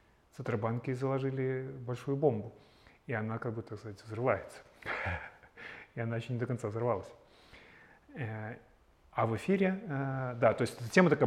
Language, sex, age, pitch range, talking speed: Russian, male, 30-49, 110-130 Hz, 145 wpm